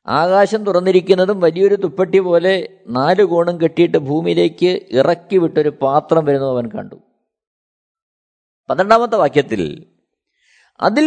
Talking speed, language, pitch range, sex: 90 wpm, Malayalam, 155-220 Hz, male